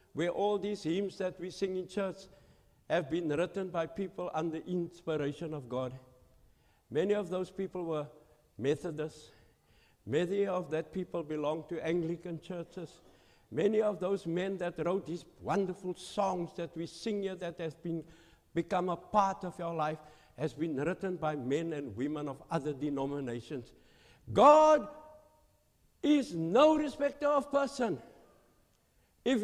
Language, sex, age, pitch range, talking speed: English, male, 60-79, 150-195 Hz, 145 wpm